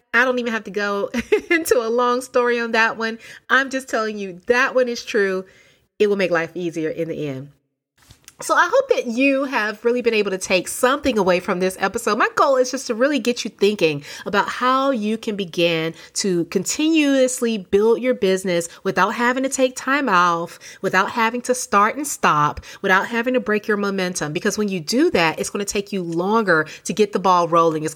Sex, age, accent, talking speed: female, 30-49, American, 210 wpm